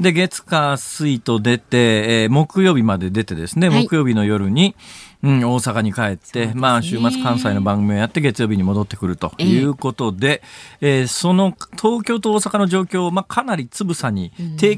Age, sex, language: 40-59, male, Japanese